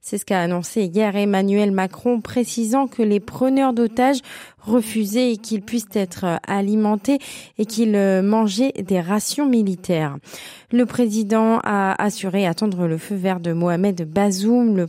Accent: French